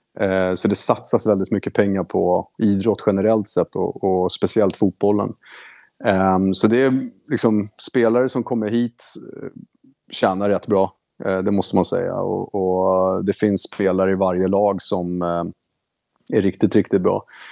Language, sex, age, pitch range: Swedish, male, 30-49, 90-110 Hz